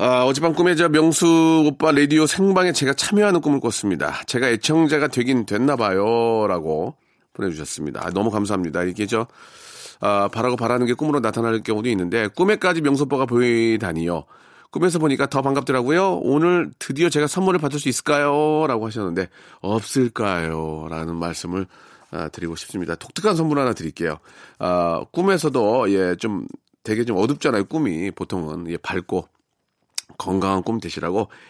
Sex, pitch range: male, 105-160 Hz